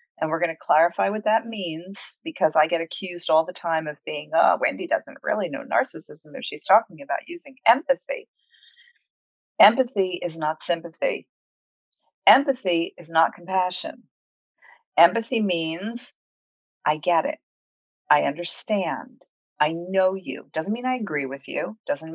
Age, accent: 40-59, American